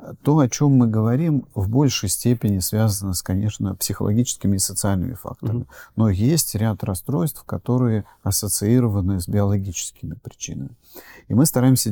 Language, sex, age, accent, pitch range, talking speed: Russian, male, 40-59, native, 100-120 Hz, 135 wpm